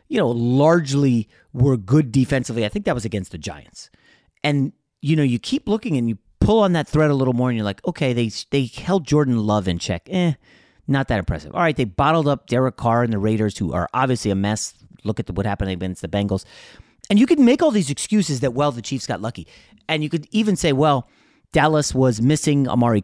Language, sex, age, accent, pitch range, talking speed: English, male, 30-49, American, 110-155 Hz, 230 wpm